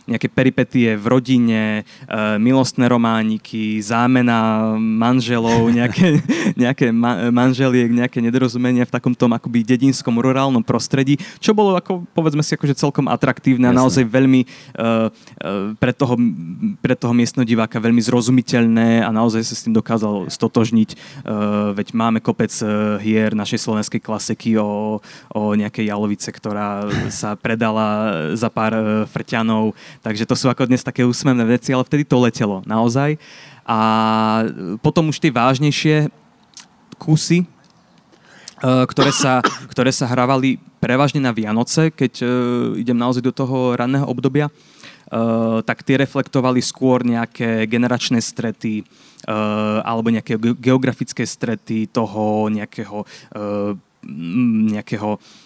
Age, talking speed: 20-39, 120 wpm